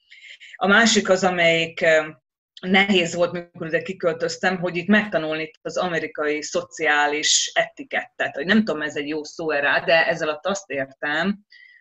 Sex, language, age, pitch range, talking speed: female, Hungarian, 30-49, 155-210 Hz, 135 wpm